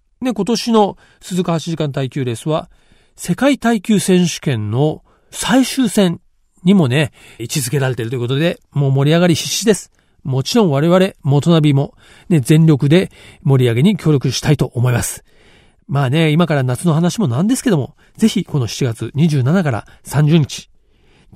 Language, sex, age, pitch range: Japanese, male, 40-59, 130-180 Hz